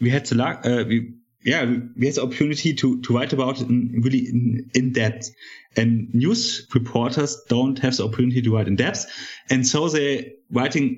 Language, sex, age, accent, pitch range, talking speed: English, male, 30-49, German, 120-140 Hz, 195 wpm